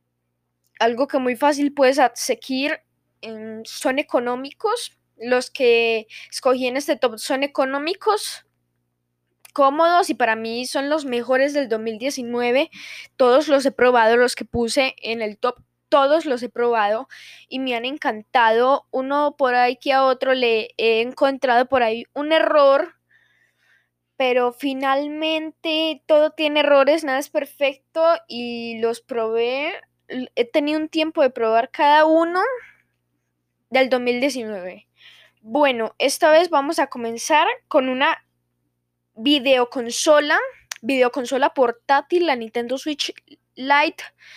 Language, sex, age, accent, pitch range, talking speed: Spanish, female, 10-29, Colombian, 240-300 Hz, 125 wpm